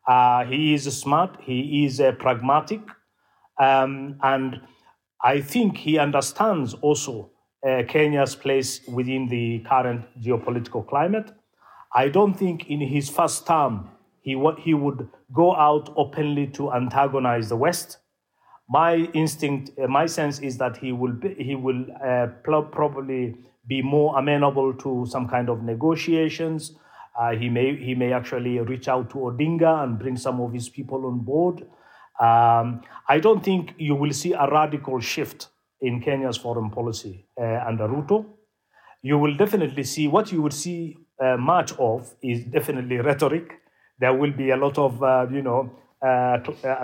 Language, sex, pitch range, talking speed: English, male, 125-150 Hz, 155 wpm